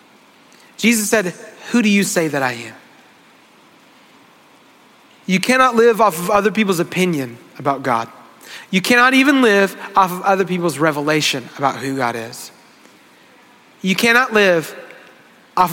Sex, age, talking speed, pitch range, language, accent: male, 30-49, 135 wpm, 150-200 Hz, English, American